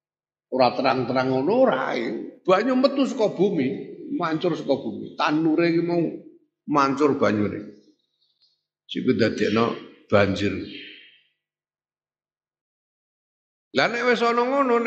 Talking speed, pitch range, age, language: 90 wpm, 130-215 Hz, 50-69, Indonesian